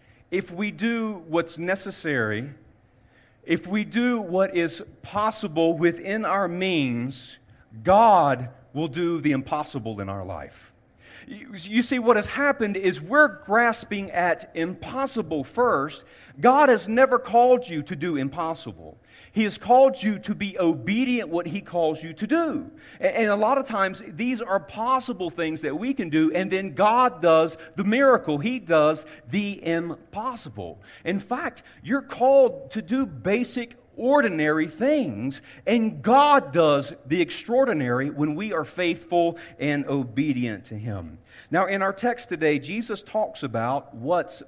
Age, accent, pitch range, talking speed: 40-59, American, 135-210 Hz, 145 wpm